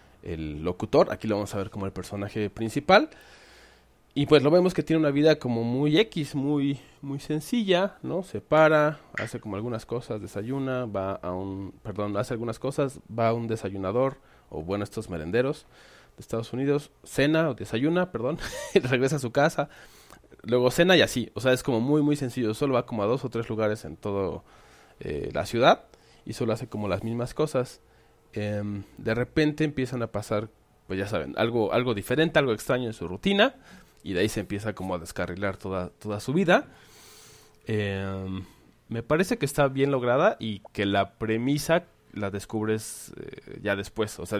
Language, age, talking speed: Spanish, 30-49, 185 wpm